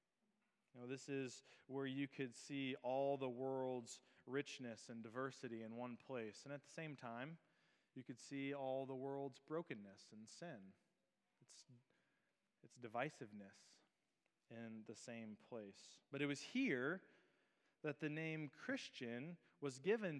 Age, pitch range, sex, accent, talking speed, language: 30-49, 130-165 Hz, male, American, 145 wpm, English